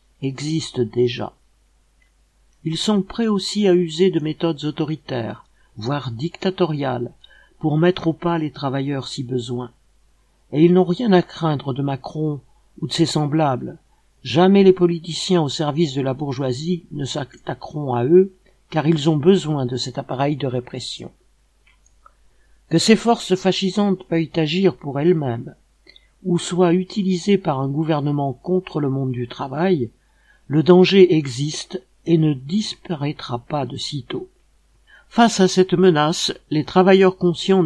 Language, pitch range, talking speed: French, 135-180 Hz, 140 wpm